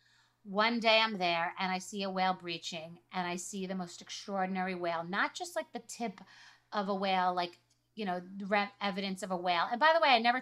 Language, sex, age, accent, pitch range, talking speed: English, female, 30-49, American, 185-225 Hz, 225 wpm